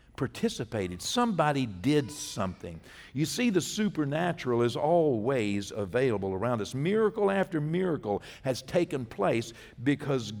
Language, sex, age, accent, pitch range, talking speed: English, male, 60-79, American, 115-155 Hz, 115 wpm